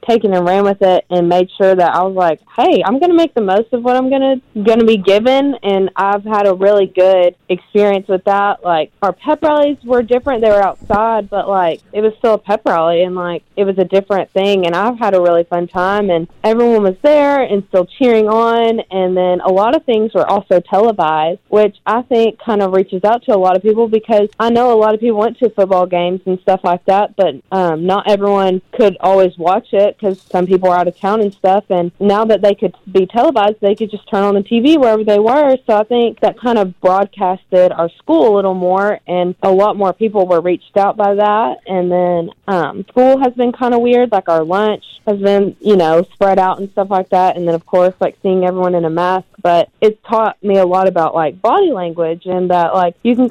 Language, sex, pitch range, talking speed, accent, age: English, female, 185-225 Hz, 240 wpm, American, 20-39